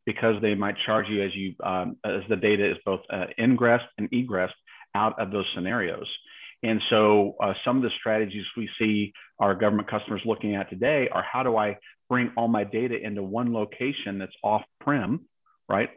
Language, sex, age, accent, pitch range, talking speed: English, male, 40-59, American, 105-125 Hz, 190 wpm